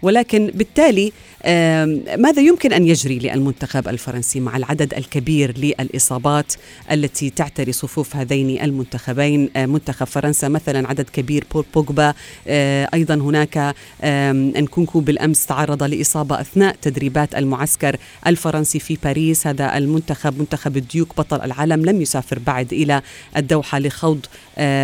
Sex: female